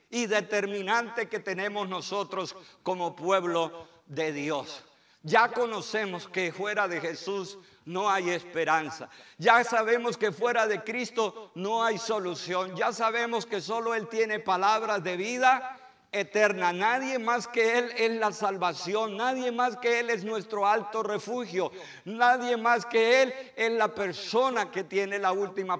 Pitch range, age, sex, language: 175-230 Hz, 50-69, male, Spanish